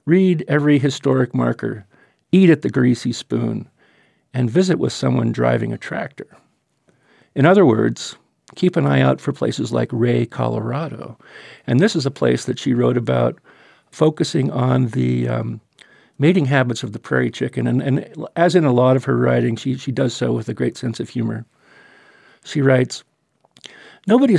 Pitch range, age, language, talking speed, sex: 125-150 Hz, 50-69, English, 170 wpm, male